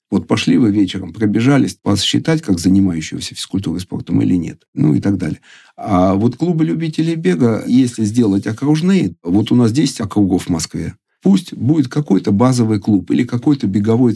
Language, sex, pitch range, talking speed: Russian, male, 95-125 Hz, 165 wpm